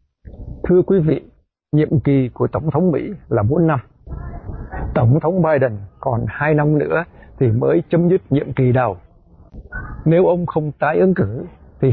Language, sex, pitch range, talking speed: Vietnamese, male, 125-165 Hz, 165 wpm